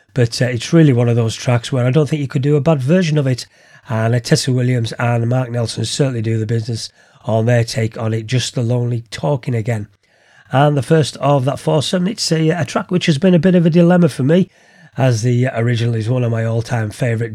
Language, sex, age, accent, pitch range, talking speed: English, male, 40-59, British, 120-160 Hz, 240 wpm